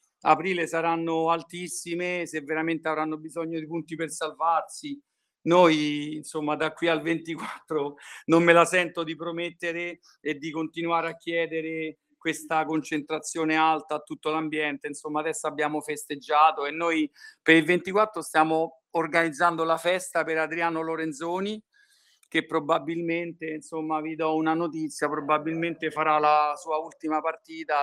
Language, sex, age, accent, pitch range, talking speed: Italian, male, 50-69, native, 155-170 Hz, 135 wpm